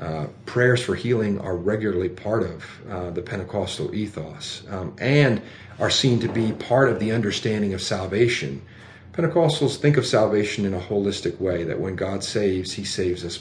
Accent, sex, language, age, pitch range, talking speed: American, male, English, 40-59, 95-115 Hz, 175 wpm